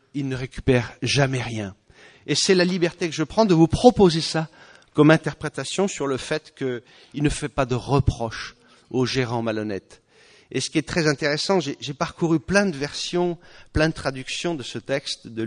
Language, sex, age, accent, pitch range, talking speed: English, male, 40-59, French, 130-170 Hz, 190 wpm